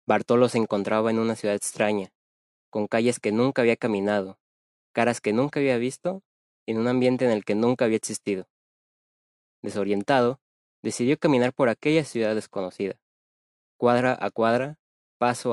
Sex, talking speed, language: male, 145 wpm, Spanish